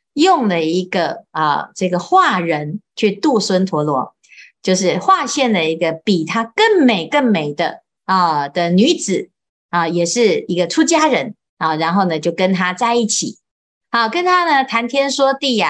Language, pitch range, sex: Chinese, 180-250 Hz, female